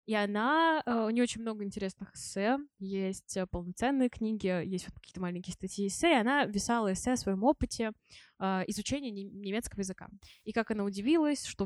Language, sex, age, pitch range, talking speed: Russian, female, 20-39, 190-235 Hz, 160 wpm